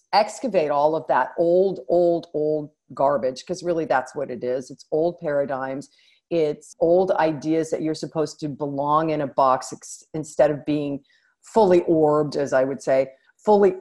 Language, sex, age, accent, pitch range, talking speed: English, female, 40-59, American, 150-175 Hz, 165 wpm